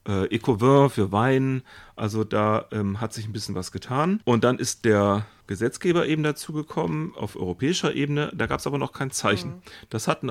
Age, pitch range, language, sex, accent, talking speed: 40-59, 105-135 Hz, German, male, German, 180 wpm